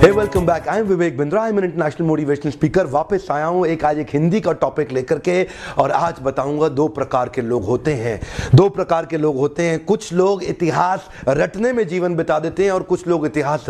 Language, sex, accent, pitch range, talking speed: Hindi, male, native, 135-180 Hz, 130 wpm